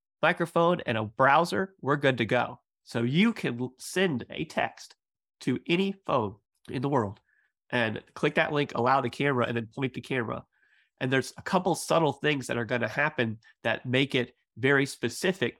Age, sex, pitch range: 30-49, male, 120-150 Hz